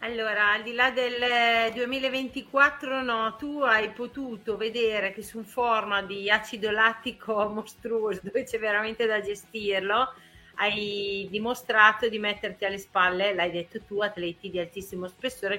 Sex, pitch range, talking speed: female, 190-235 Hz, 140 wpm